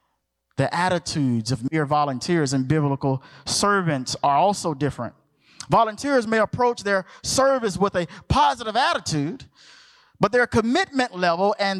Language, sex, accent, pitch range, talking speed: English, male, American, 155-235 Hz, 125 wpm